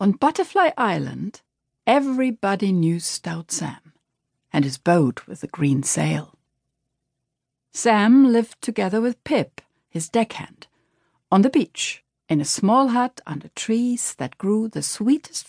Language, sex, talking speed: English, female, 130 wpm